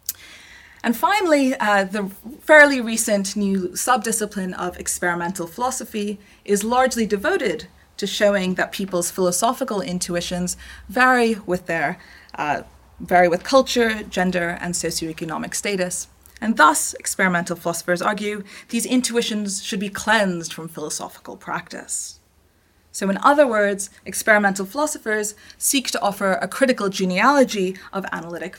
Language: English